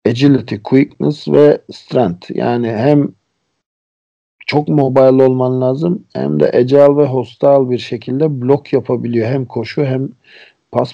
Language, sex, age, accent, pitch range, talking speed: Turkish, male, 50-69, native, 125-170 Hz, 125 wpm